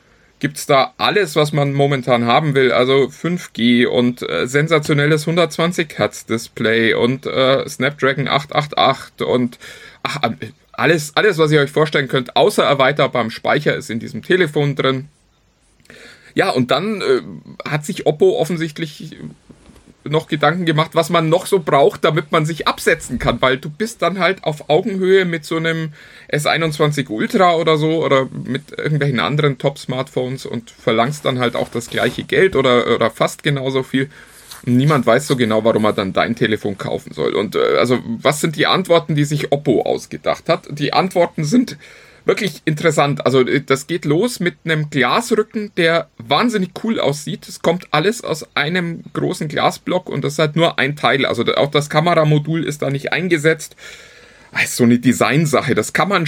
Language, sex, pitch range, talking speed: German, male, 130-170 Hz, 165 wpm